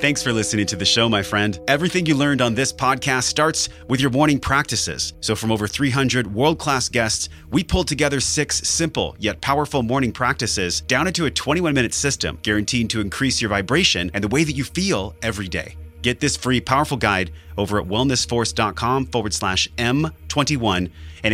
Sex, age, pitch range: male, 30-49, 90-125 Hz